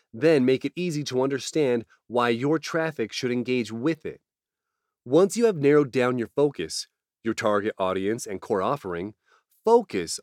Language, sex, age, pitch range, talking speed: English, male, 30-49, 125-180 Hz, 160 wpm